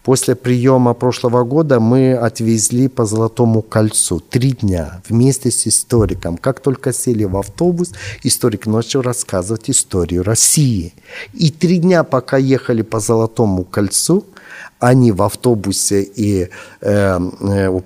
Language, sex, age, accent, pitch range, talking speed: Russian, male, 50-69, native, 100-135 Hz, 125 wpm